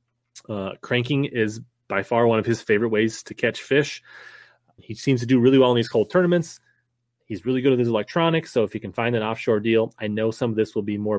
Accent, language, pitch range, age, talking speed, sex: American, English, 105-125 Hz, 30-49, 240 wpm, male